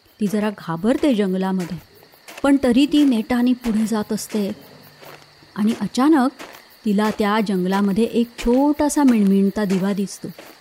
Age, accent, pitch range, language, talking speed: 30-49, native, 200-260 Hz, Marathi, 125 wpm